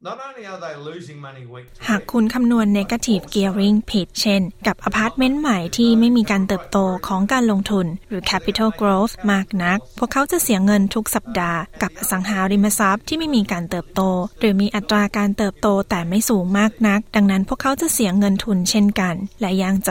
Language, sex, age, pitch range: Thai, female, 20-39, 185-215 Hz